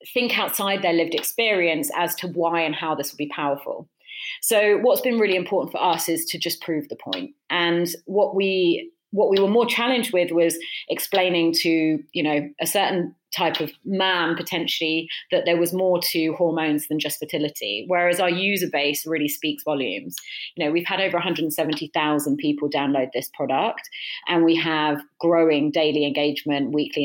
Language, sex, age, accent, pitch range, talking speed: English, female, 30-49, British, 150-180 Hz, 175 wpm